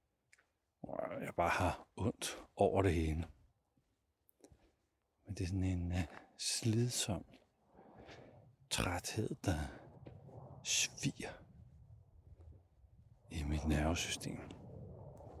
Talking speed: 75 wpm